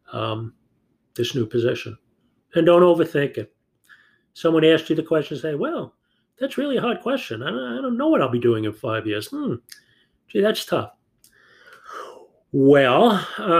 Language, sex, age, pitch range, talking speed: English, male, 40-59, 140-205 Hz, 160 wpm